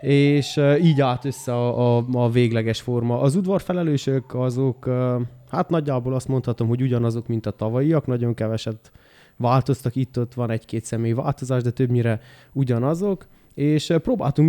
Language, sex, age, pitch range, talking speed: Hungarian, male, 20-39, 120-140 Hz, 140 wpm